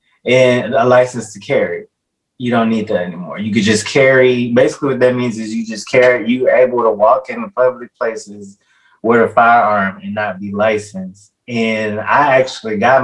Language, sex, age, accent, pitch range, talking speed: English, male, 20-39, American, 105-125 Hz, 185 wpm